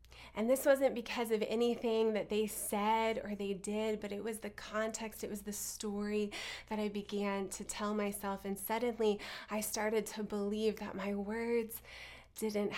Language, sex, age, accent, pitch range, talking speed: English, female, 20-39, American, 195-220 Hz, 175 wpm